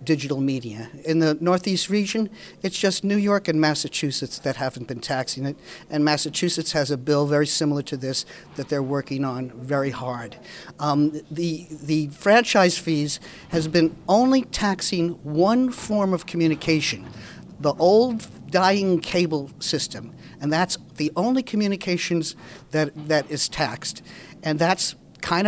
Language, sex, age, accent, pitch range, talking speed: English, male, 50-69, American, 150-195 Hz, 145 wpm